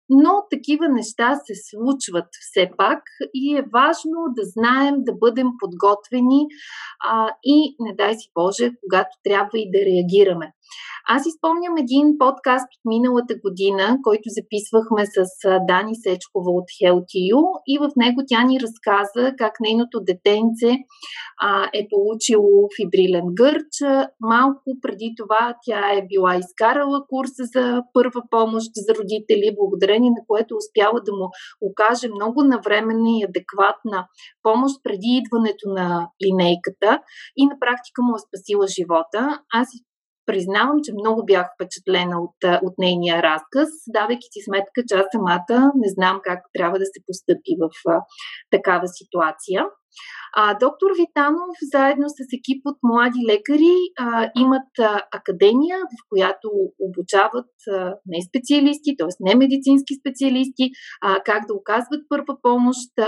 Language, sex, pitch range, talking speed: Bulgarian, female, 195-265 Hz, 135 wpm